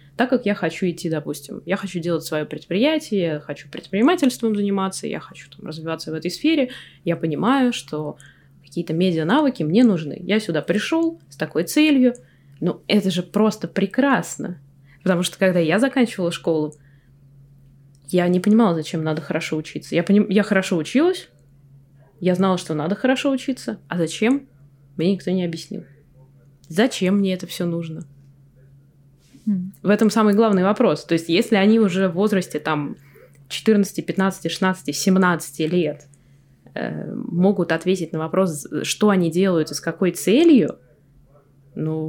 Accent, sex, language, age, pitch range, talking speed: native, female, Russian, 20-39, 150-205 Hz, 150 wpm